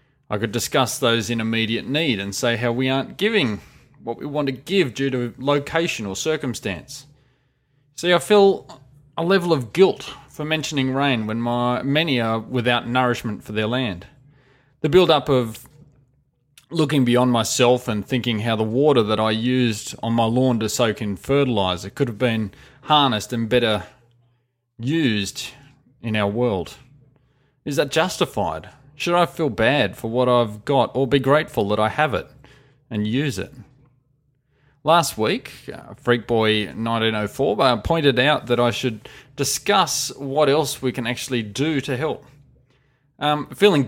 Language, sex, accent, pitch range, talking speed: English, male, Australian, 115-140 Hz, 155 wpm